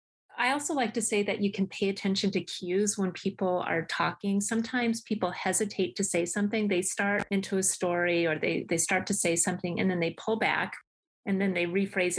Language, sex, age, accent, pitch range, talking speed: English, female, 30-49, American, 180-225 Hz, 210 wpm